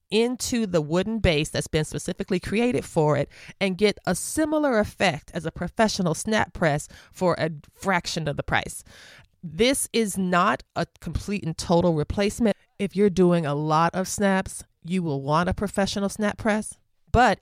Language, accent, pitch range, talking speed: English, American, 155-200 Hz, 170 wpm